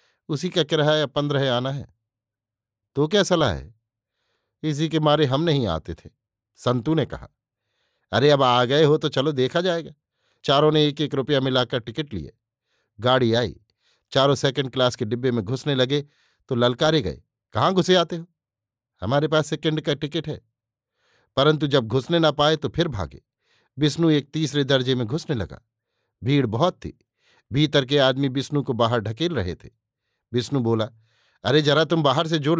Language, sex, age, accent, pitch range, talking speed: Hindi, male, 60-79, native, 115-155 Hz, 175 wpm